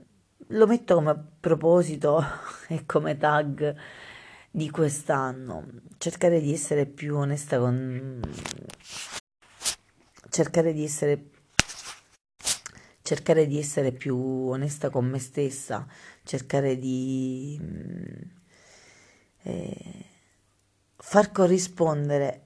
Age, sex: 30-49, female